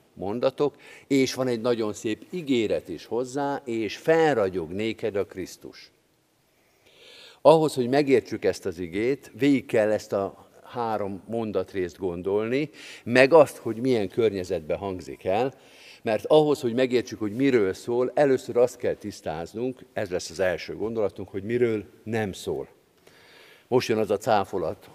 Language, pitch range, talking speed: Hungarian, 105-145 Hz, 140 wpm